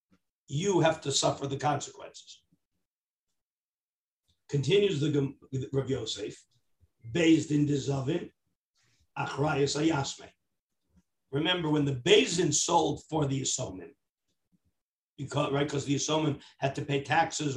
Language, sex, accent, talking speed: English, male, American, 110 wpm